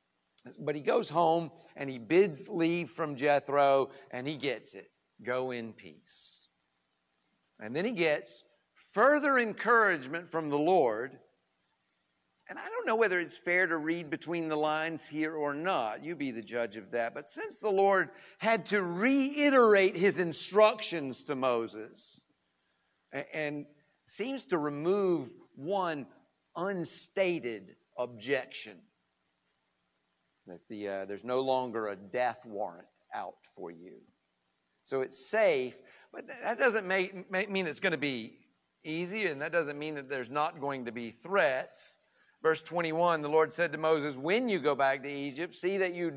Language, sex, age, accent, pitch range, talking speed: English, male, 50-69, American, 115-175 Hz, 155 wpm